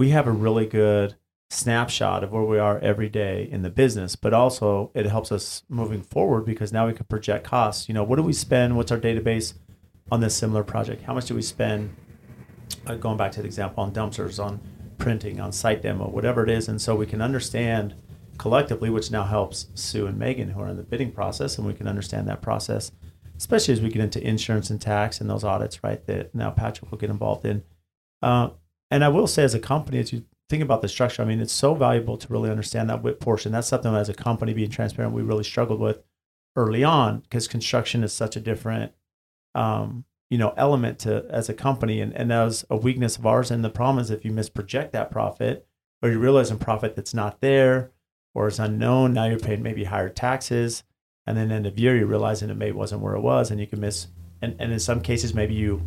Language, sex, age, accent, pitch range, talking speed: English, male, 40-59, American, 105-120 Hz, 230 wpm